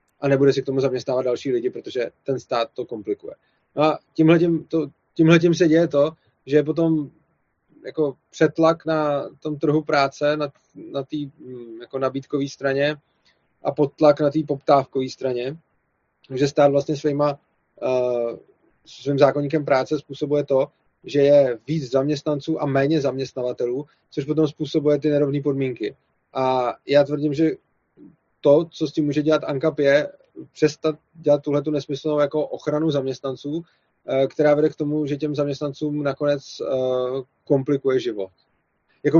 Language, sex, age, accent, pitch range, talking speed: Czech, male, 20-39, native, 135-155 Hz, 140 wpm